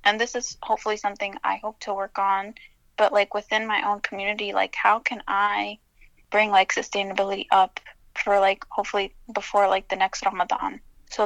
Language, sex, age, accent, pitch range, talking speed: English, female, 10-29, American, 190-210 Hz, 175 wpm